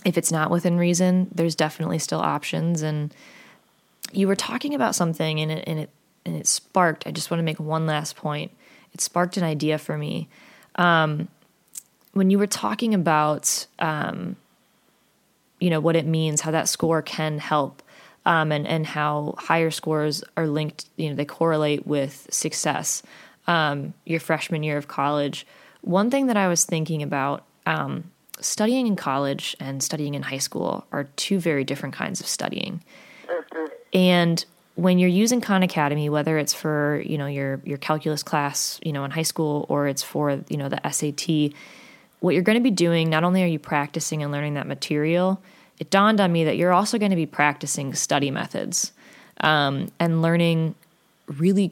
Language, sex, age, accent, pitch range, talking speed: English, female, 20-39, American, 150-180 Hz, 180 wpm